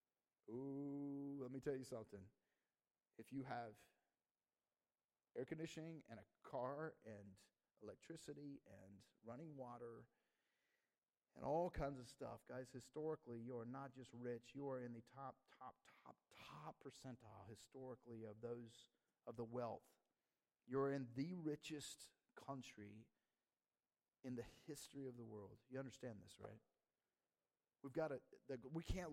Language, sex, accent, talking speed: English, male, American, 135 wpm